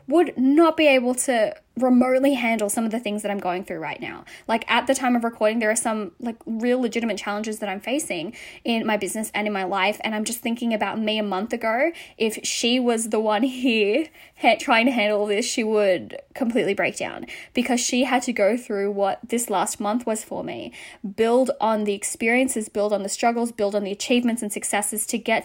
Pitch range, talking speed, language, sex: 210-250 Hz, 220 wpm, English, female